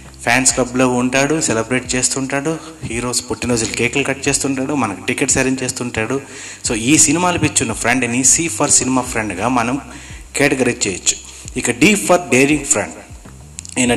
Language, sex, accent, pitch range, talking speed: Telugu, male, native, 110-145 Hz, 140 wpm